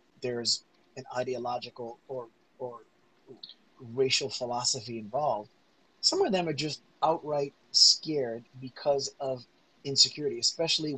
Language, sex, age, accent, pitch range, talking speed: English, male, 30-49, American, 125-140 Hz, 105 wpm